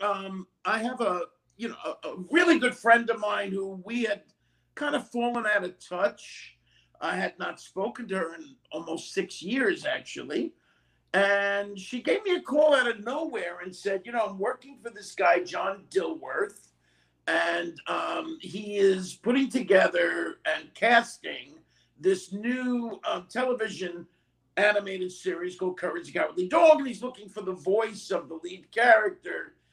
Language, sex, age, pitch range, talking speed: English, male, 50-69, 190-255 Hz, 170 wpm